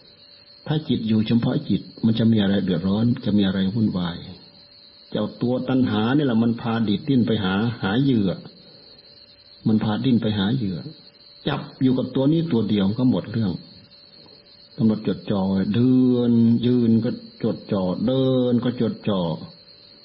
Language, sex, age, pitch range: Thai, male, 60-79, 95-115 Hz